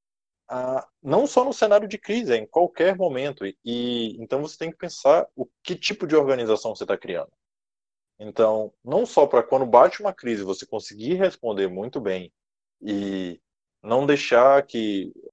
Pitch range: 110-170 Hz